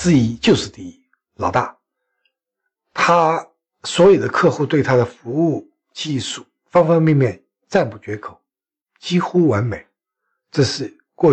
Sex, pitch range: male, 125-195 Hz